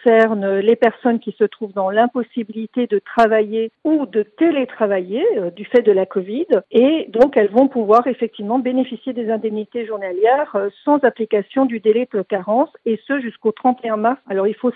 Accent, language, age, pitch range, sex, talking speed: French, French, 50-69, 205-250 Hz, female, 175 wpm